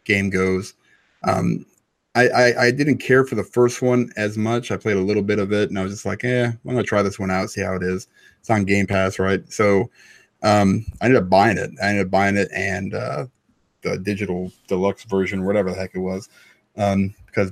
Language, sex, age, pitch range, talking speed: English, male, 20-39, 95-115 Hz, 230 wpm